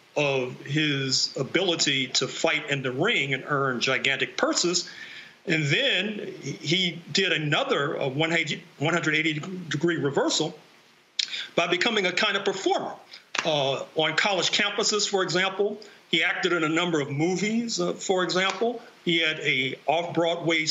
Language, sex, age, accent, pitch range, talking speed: English, male, 50-69, American, 155-195 Hz, 130 wpm